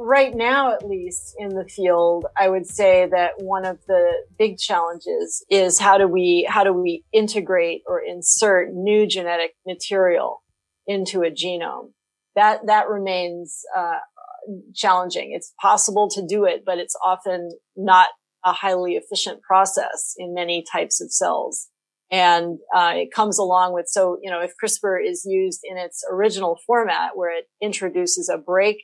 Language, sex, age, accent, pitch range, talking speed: Swedish, female, 30-49, American, 180-215 Hz, 160 wpm